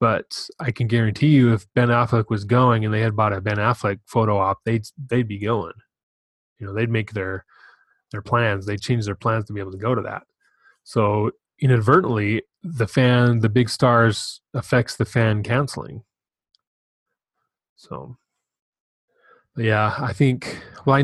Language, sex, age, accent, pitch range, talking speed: English, male, 20-39, American, 105-125 Hz, 165 wpm